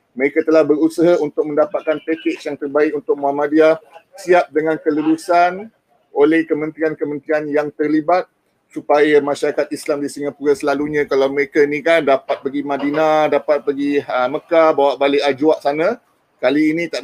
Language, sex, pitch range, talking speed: Malay, male, 150-175 Hz, 145 wpm